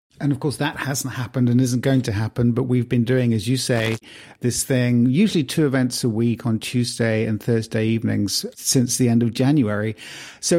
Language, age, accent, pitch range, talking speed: English, 50-69, British, 110-135 Hz, 205 wpm